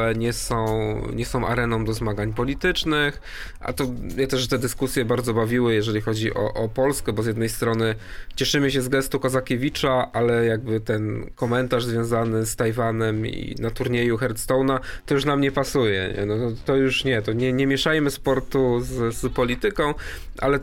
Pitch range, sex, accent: 110-135 Hz, male, native